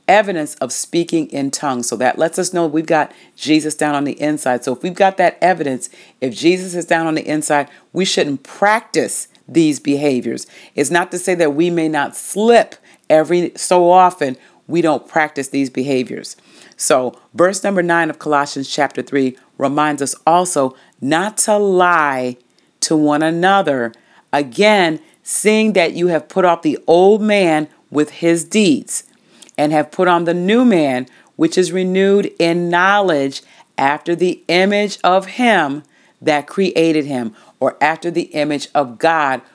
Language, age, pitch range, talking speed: English, 40-59, 145-185 Hz, 165 wpm